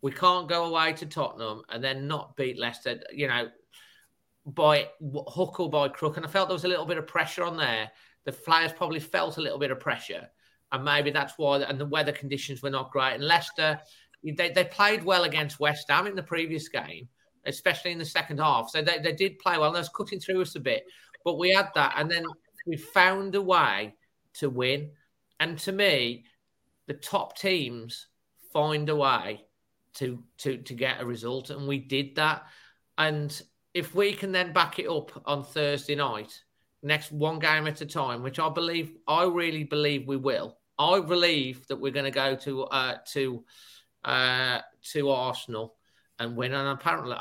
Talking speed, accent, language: 195 wpm, British, English